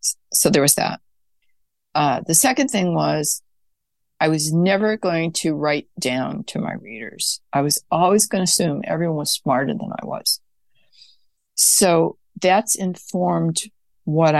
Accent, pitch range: American, 155-195 Hz